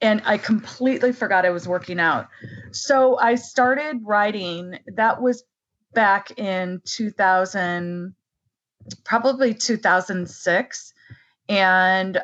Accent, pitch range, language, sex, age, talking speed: American, 180-215 Hz, English, female, 20-39, 100 wpm